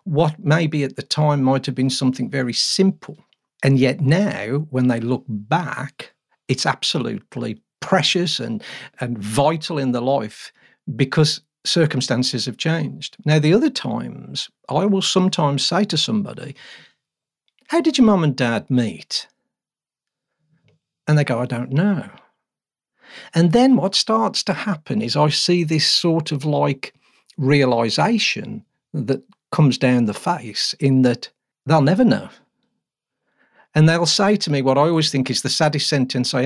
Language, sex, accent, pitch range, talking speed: English, male, British, 130-170 Hz, 150 wpm